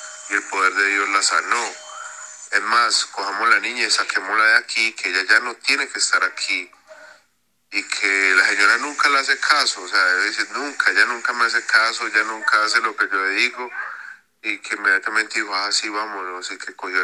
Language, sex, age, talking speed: English, male, 30-49, 210 wpm